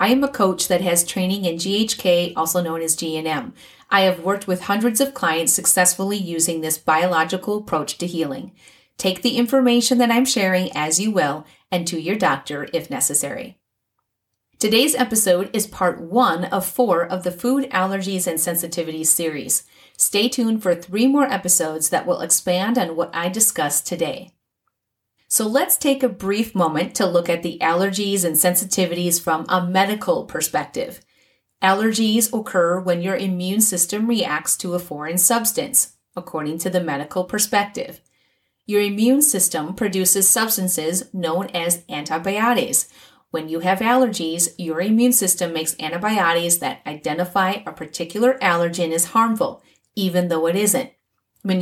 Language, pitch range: English, 170-225 Hz